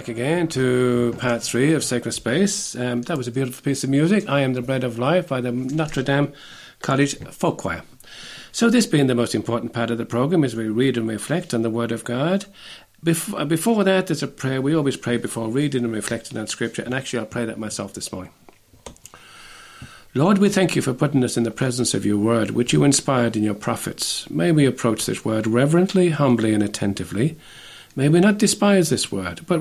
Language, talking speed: English, 215 wpm